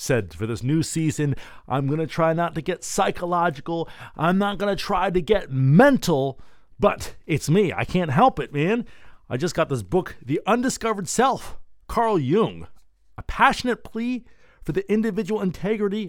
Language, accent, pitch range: English, American, 120-185 Hz